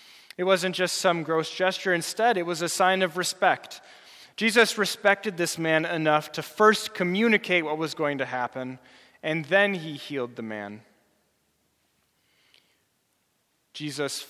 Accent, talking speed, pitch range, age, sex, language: American, 140 wpm, 145-190 Hz, 20-39, male, English